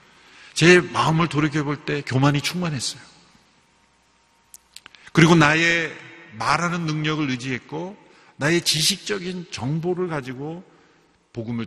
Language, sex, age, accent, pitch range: Korean, male, 50-69, native, 110-165 Hz